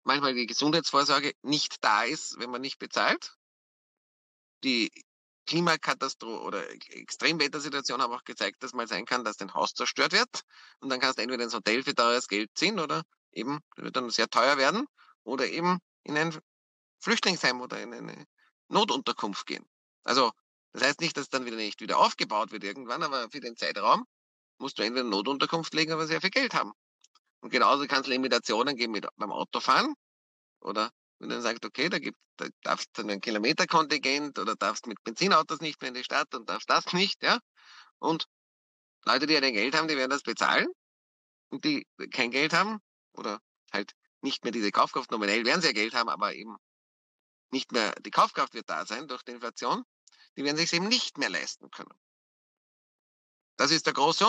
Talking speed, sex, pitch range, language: 190 wpm, male, 105-160 Hz, German